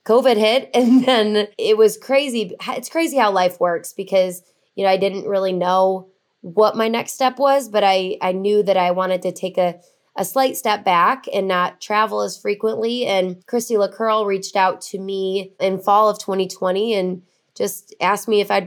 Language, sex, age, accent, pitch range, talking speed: English, female, 20-39, American, 185-215 Hz, 195 wpm